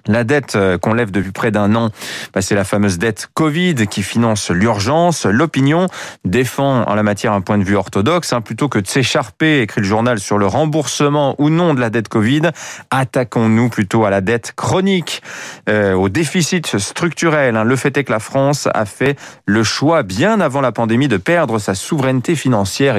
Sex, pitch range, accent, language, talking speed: male, 110-155 Hz, French, French, 185 wpm